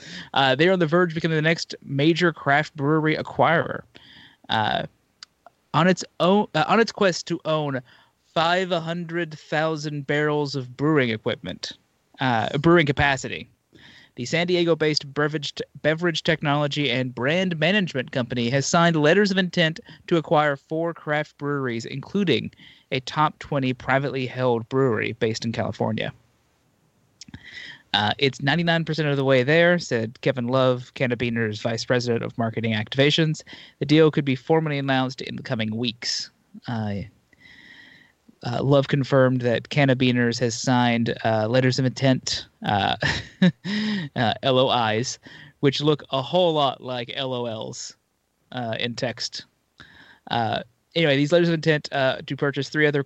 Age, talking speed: 30-49, 140 wpm